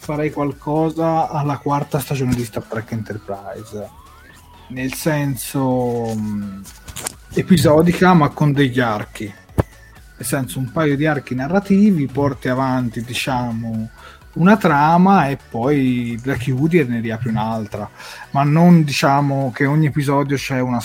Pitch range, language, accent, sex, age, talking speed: 120-155 Hz, Italian, native, male, 30-49, 125 wpm